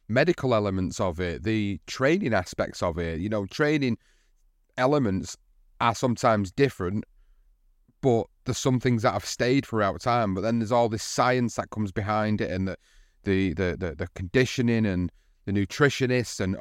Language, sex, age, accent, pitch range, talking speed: English, male, 30-49, British, 100-125 Hz, 165 wpm